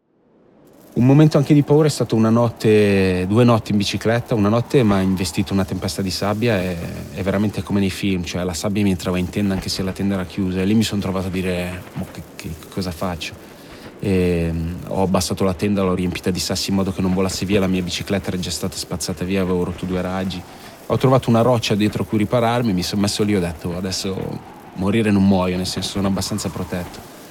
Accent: native